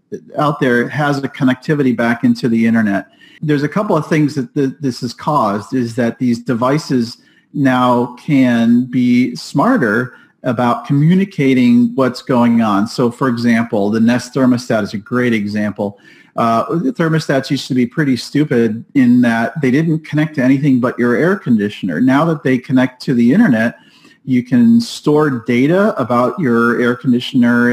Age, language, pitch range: 40-59, English, 120-145 Hz